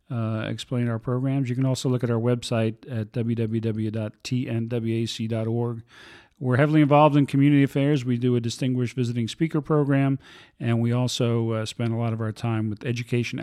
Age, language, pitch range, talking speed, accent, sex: 40-59, English, 115-130 Hz, 170 wpm, American, male